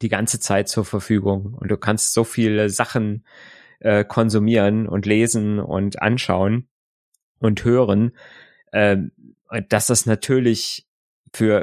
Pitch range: 95-110 Hz